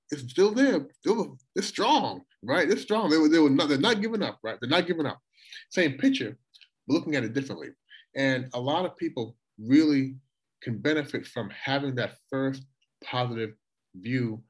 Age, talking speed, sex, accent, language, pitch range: 30-49, 155 wpm, male, American, English, 120-170 Hz